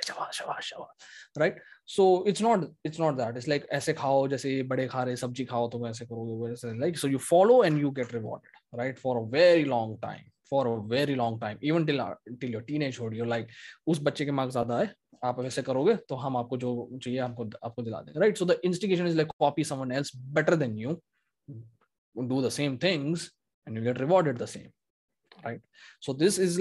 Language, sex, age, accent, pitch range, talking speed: Hindi, male, 20-39, native, 120-155 Hz, 175 wpm